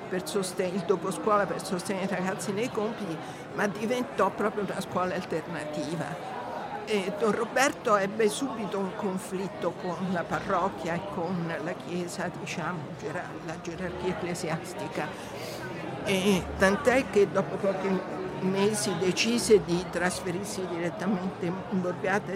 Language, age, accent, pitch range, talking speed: Italian, 60-79, native, 180-215 Hz, 125 wpm